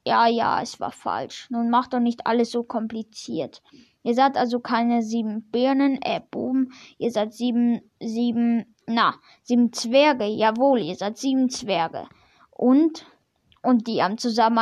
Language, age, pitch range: German, 10-29, 235-280 Hz